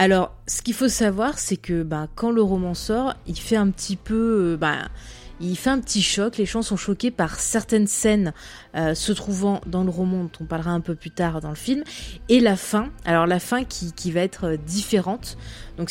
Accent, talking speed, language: French, 220 wpm, French